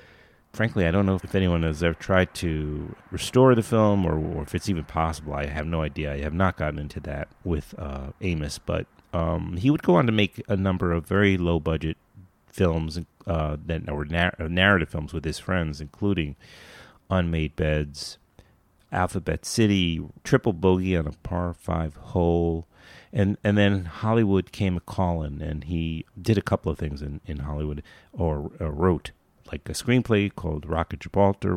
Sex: male